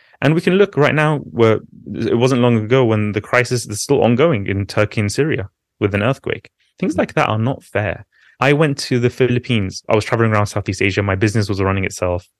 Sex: male